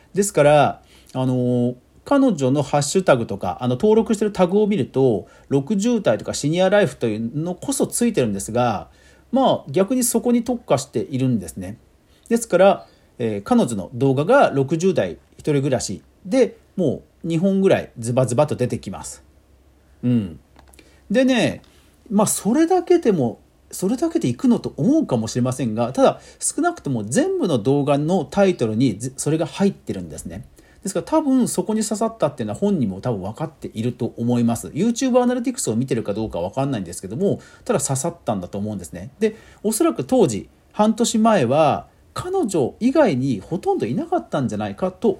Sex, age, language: male, 40-59, Japanese